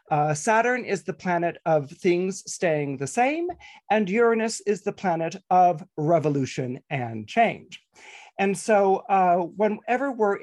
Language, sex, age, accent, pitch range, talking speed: English, male, 40-59, American, 150-205 Hz, 140 wpm